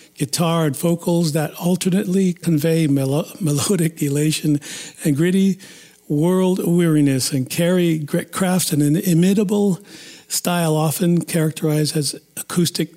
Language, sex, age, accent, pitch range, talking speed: English, male, 50-69, American, 145-165 Hz, 115 wpm